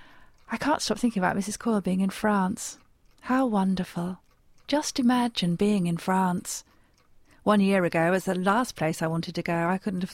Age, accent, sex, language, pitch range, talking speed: 40-59, British, female, English, 185-230 Hz, 185 wpm